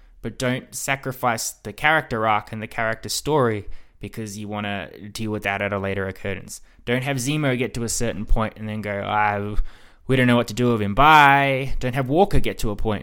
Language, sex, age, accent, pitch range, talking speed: English, male, 20-39, Australian, 105-135 Hz, 225 wpm